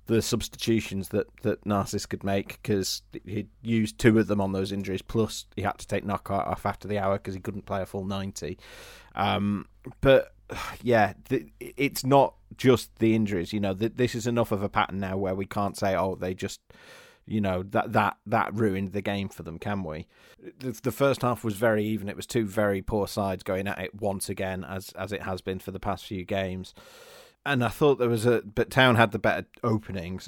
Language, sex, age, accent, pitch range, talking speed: English, male, 30-49, British, 95-115 Hz, 220 wpm